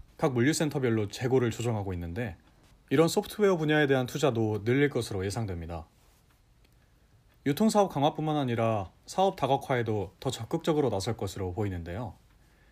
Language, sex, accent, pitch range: Korean, male, native, 105-155 Hz